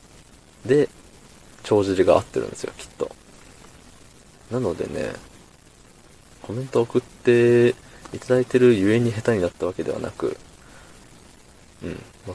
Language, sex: Japanese, male